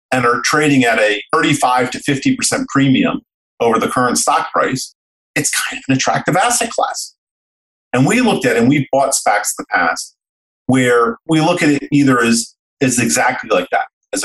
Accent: American